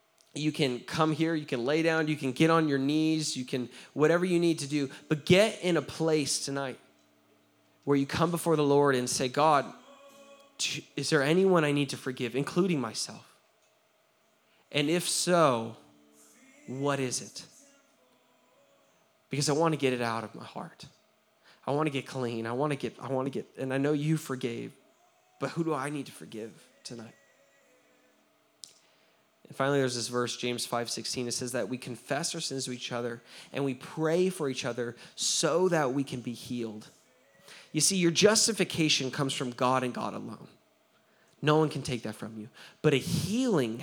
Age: 20-39